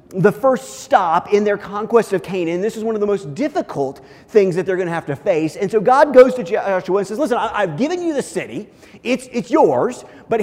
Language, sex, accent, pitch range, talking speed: English, male, American, 165-235 Hz, 235 wpm